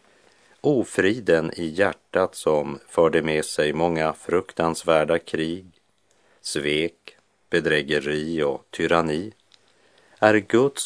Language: Swedish